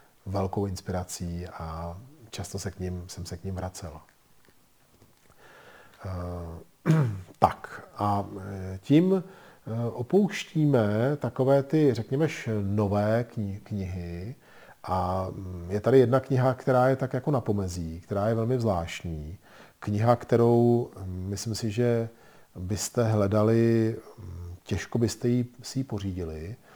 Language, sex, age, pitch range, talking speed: Czech, male, 40-59, 95-115 Hz, 115 wpm